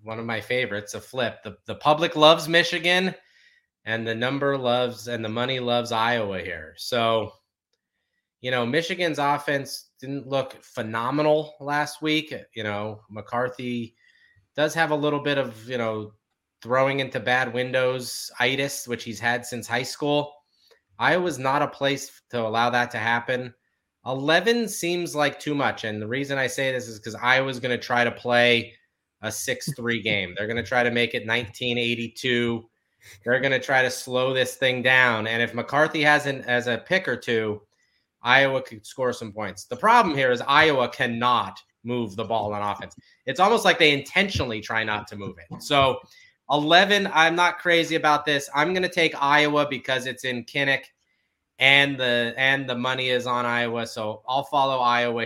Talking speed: 175 wpm